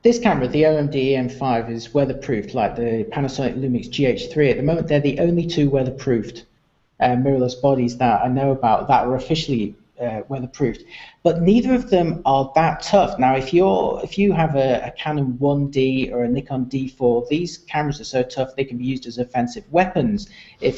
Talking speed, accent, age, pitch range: 190 wpm, British, 40-59, 130-160 Hz